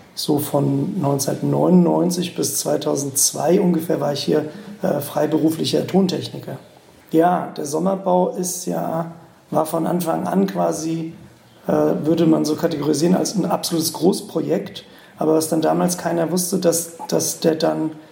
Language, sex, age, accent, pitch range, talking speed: German, male, 40-59, German, 155-180 Hz, 130 wpm